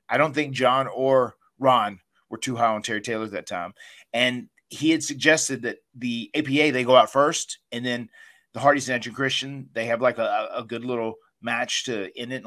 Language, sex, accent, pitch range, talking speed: English, male, American, 125-150 Hz, 215 wpm